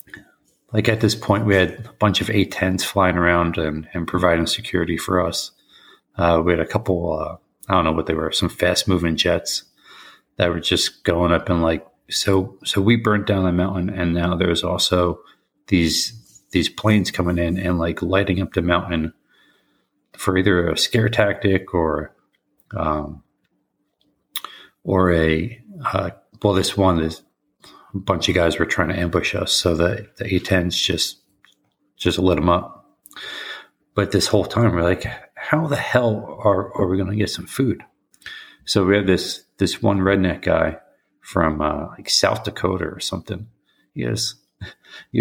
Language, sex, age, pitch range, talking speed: English, male, 40-59, 85-100 Hz, 175 wpm